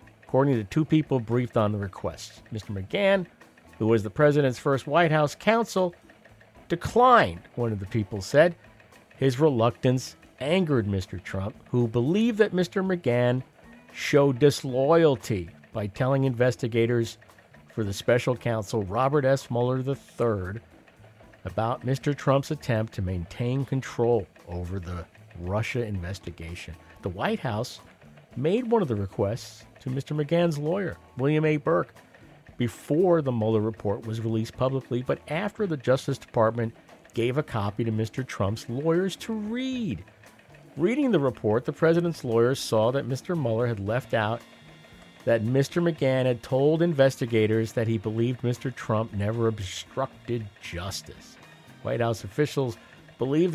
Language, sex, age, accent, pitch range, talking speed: English, male, 50-69, American, 110-150 Hz, 140 wpm